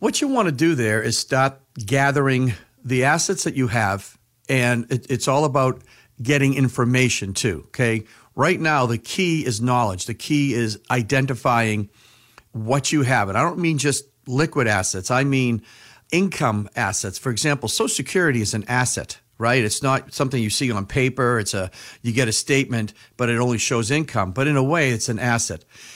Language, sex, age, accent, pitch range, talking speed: English, male, 50-69, American, 115-145 Hz, 185 wpm